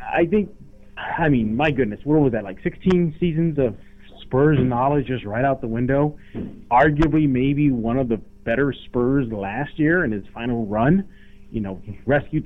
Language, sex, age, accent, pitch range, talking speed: English, male, 30-49, American, 110-145 Hz, 175 wpm